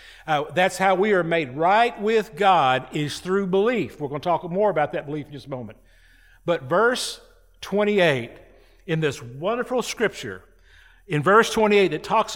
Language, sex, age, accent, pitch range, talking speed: English, male, 50-69, American, 145-185 Hz, 175 wpm